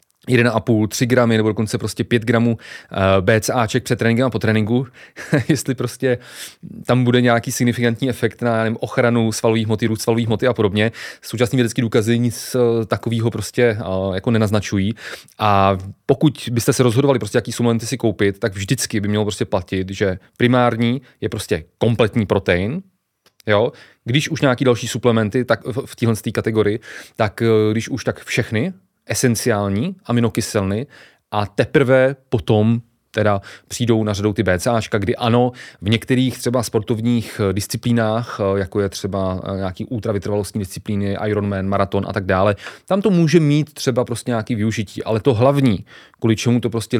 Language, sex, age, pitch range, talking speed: Czech, male, 30-49, 105-125 Hz, 155 wpm